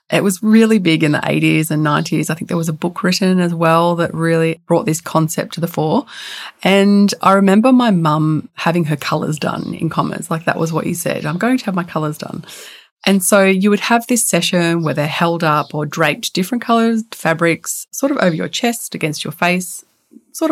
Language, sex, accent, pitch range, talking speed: English, female, Australian, 160-205 Hz, 220 wpm